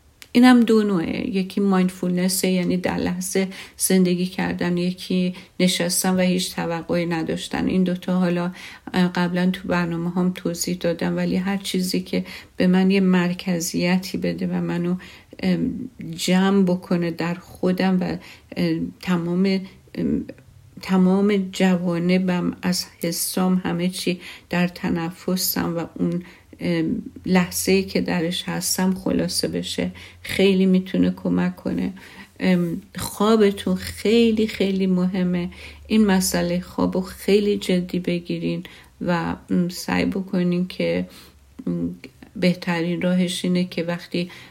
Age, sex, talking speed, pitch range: 50-69, female, 110 wpm, 170-190 Hz